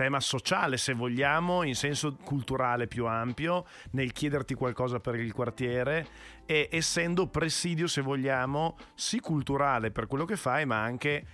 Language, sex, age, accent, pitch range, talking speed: Italian, male, 40-59, native, 115-145 Hz, 150 wpm